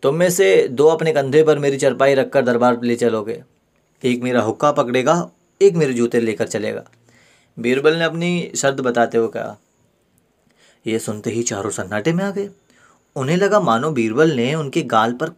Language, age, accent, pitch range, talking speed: Hindi, 30-49, native, 115-160 Hz, 175 wpm